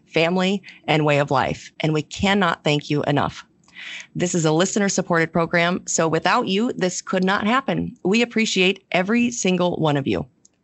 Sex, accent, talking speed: female, American, 175 wpm